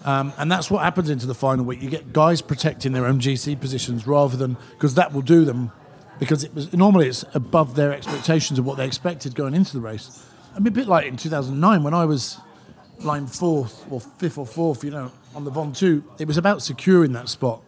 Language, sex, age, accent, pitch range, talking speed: English, male, 50-69, British, 135-165 Hz, 230 wpm